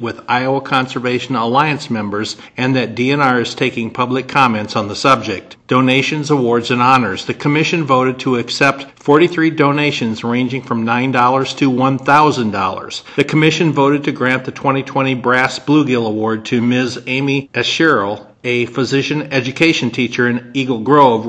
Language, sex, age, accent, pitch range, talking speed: English, male, 50-69, American, 120-140 Hz, 145 wpm